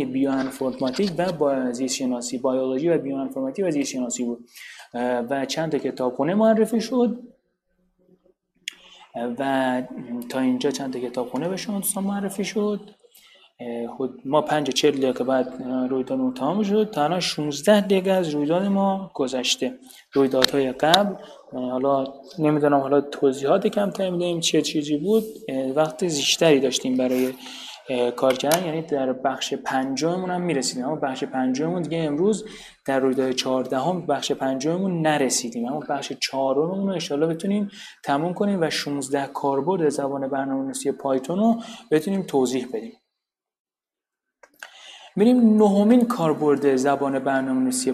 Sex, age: male, 30-49